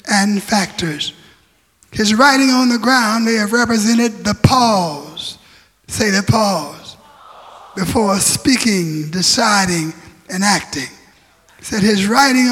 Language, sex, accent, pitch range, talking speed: English, male, American, 205-245 Hz, 115 wpm